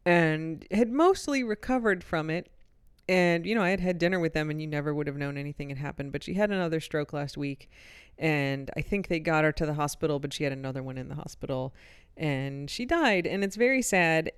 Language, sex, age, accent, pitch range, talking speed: English, female, 30-49, American, 155-195 Hz, 230 wpm